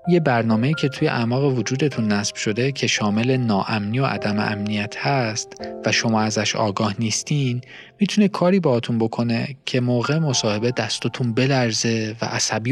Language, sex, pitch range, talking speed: Persian, male, 105-135 Hz, 145 wpm